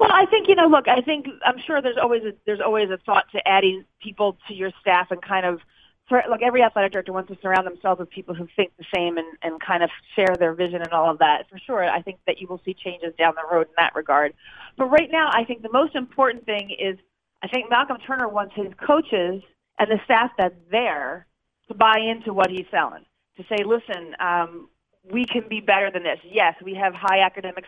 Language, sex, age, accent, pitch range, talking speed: English, female, 40-59, American, 180-220 Hz, 235 wpm